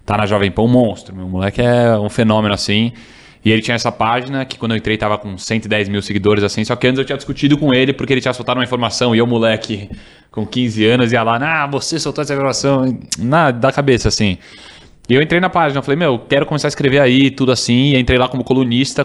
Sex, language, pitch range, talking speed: male, Portuguese, 110-130 Hz, 245 wpm